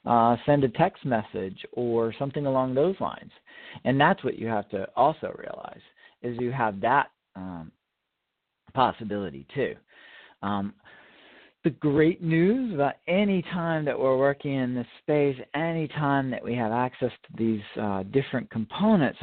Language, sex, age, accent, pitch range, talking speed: English, male, 50-69, American, 115-160 Hz, 155 wpm